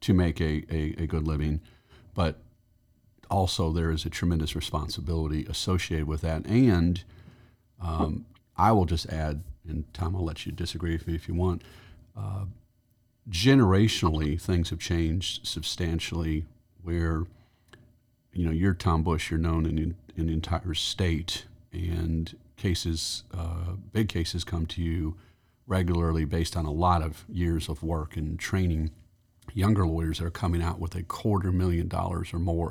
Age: 40-59